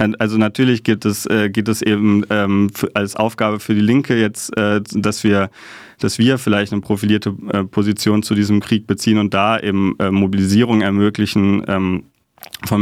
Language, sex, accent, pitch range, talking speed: German, male, German, 100-105 Hz, 135 wpm